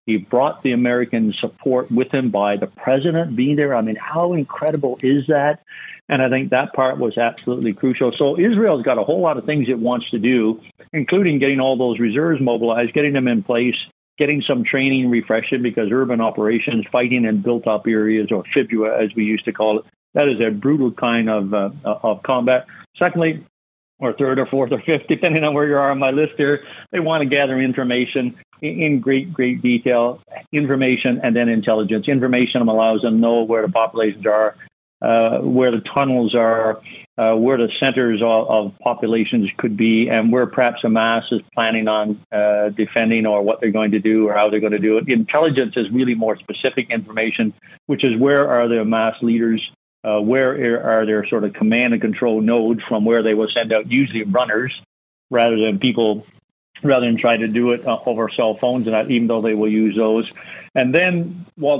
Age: 50-69